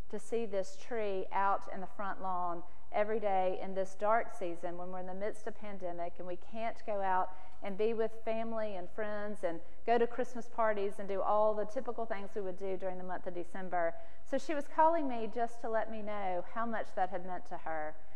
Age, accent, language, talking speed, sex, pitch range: 40-59, American, English, 230 wpm, female, 185-230 Hz